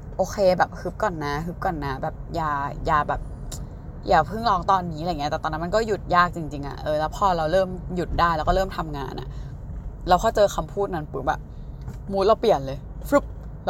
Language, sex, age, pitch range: Thai, female, 20-39, 150-195 Hz